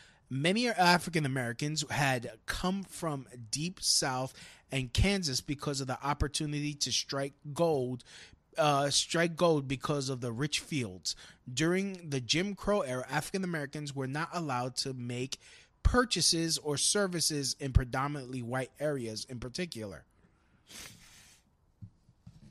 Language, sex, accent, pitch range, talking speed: English, male, American, 130-185 Hz, 115 wpm